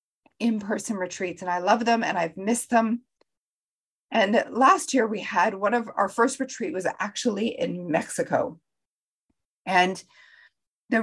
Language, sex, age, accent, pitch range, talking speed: English, female, 40-59, American, 195-240 Hz, 140 wpm